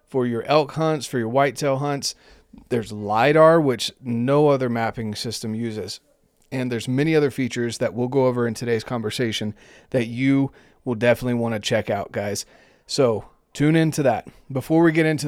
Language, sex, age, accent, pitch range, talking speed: English, male, 30-49, American, 115-140 Hz, 175 wpm